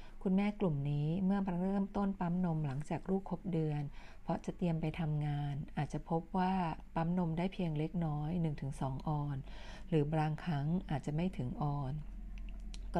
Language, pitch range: Thai, 150-180 Hz